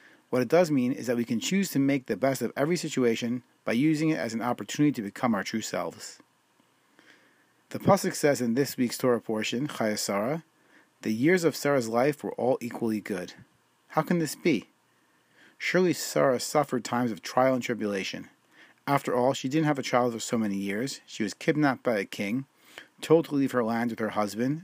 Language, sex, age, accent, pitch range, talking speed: English, male, 30-49, American, 120-150 Hz, 200 wpm